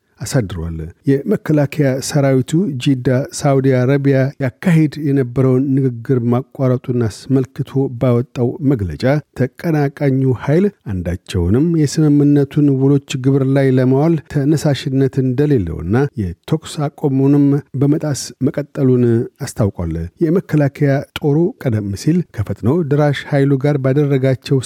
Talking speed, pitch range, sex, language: 85 wpm, 125-145 Hz, male, Amharic